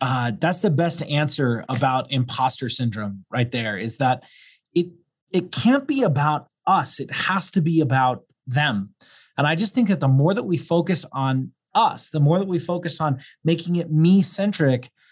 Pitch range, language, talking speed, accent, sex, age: 135-185 Hz, English, 185 wpm, American, male, 30-49